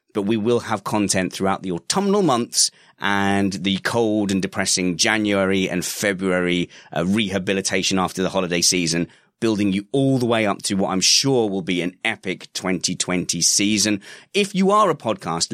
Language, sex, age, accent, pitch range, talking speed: English, male, 30-49, British, 95-130 Hz, 170 wpm